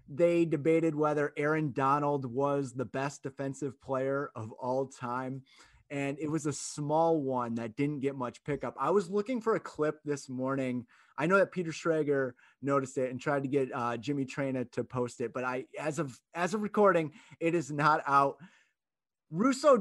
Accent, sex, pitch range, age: American, male, 135-200 Hz, 30-49